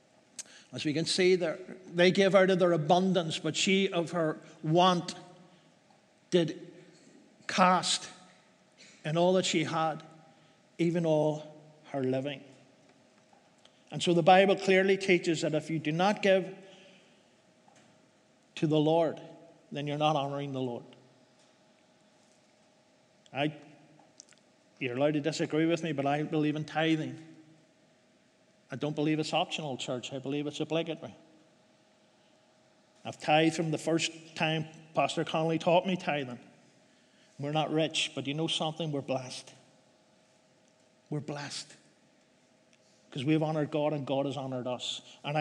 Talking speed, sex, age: 135 wpm, male, 50-69